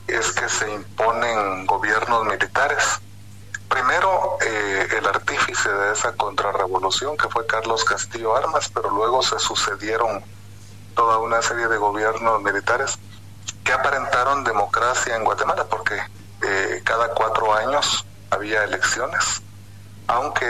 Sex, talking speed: male, 120 wpm